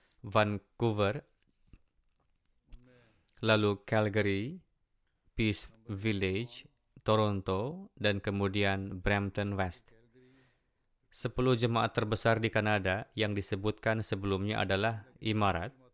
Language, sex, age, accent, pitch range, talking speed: Indonesian, male, 20-39, native, 100-120 Hz, 75 wpm